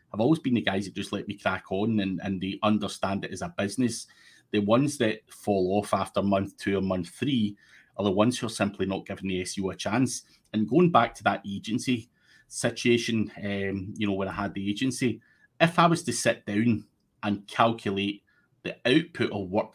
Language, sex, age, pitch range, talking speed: English, male, 30-49, 100-115 Hz, 210 wpm